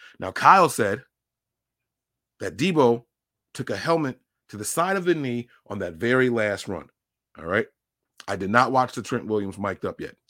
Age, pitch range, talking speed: 30-49, 100-125 Hz, 180 wpm